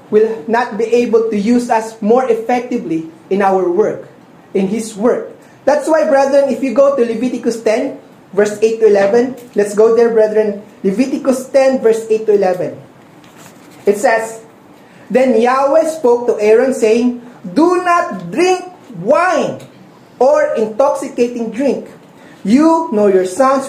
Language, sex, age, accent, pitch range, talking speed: English, male, 20-39, Filipino, 205-265 Hz, 145 wpm